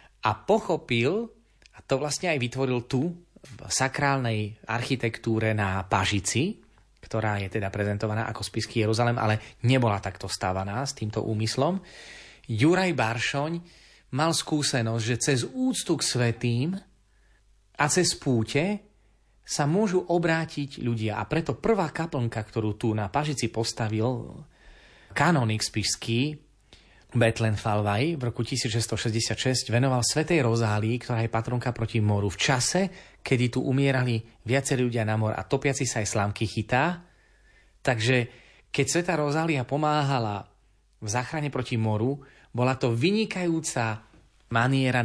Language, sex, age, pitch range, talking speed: Slovak, male, 30-49, 110-145 Hz, 125 wpm